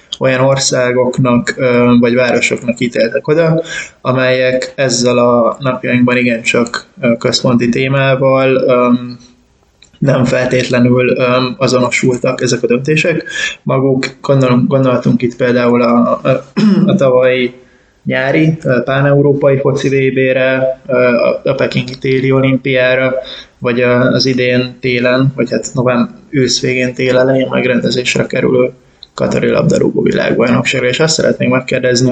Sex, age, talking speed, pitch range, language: male, 20-39, 105 wpm, 125-135 Hz, Hungarian